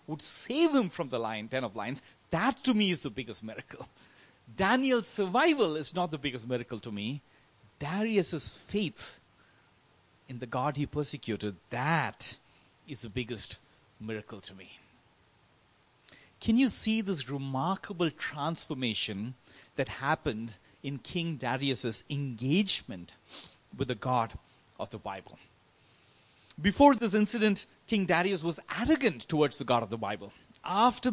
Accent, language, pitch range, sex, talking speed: Indian, English, 125-205 Hz, male, 135 wpm